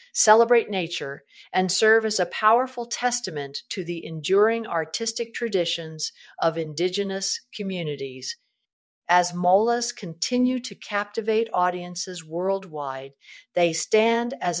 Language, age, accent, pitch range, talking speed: English, 50-69, American, 155-215 Hz, 105 wpm